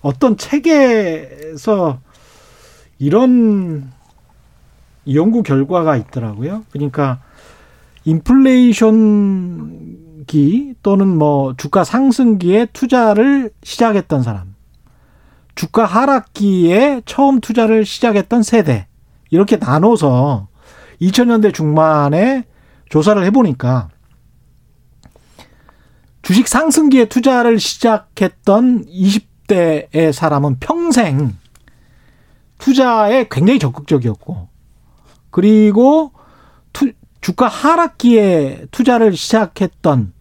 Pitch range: 145-235 Hz